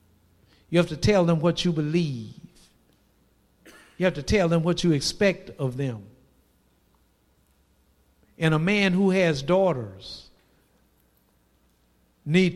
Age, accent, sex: 60-79, American, male